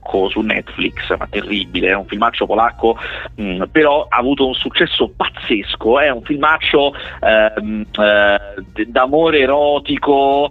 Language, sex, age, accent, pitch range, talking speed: Italian, male, 30-49, native, 105-130 Hz, 120 wpm